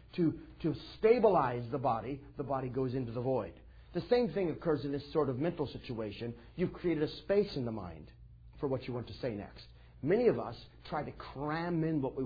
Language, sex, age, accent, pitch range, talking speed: English, male, 50-69, American, 110-175 Hz, 215 wpm